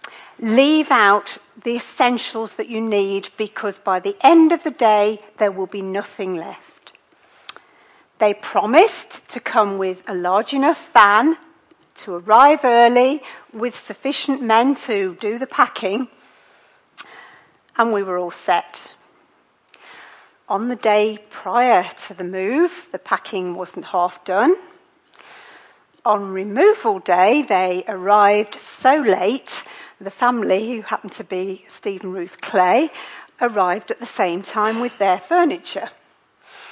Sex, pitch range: female, 195-265 Hz